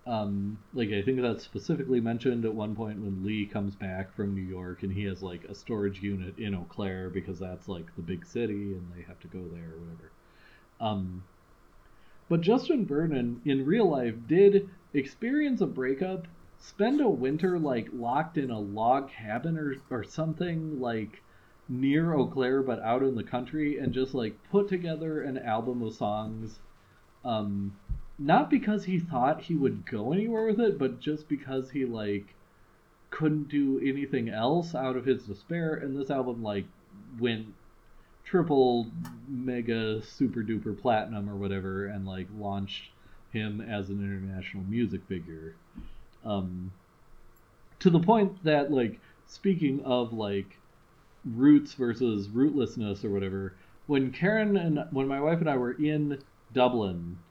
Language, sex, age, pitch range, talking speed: English, male, 30-49, 100-145 Hz, 160 wpm